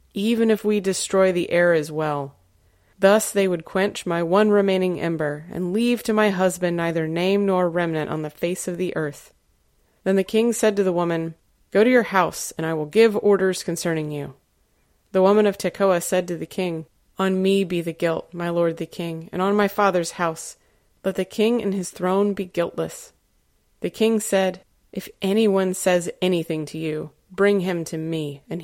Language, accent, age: English, American, 30-49